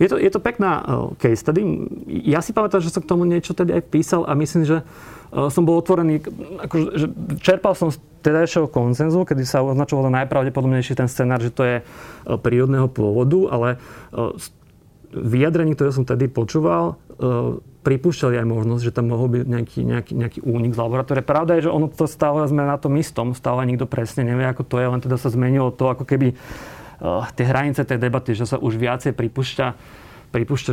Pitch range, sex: 125-150 Hz, male